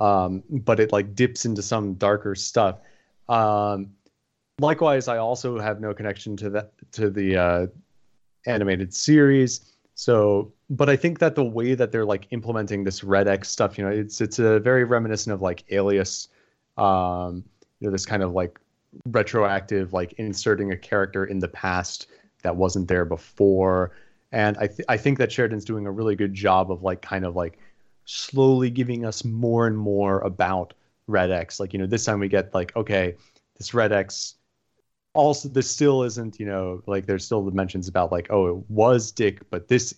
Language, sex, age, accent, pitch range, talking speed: English, male, 30-49, American, 95-115 Hz, 185 wpm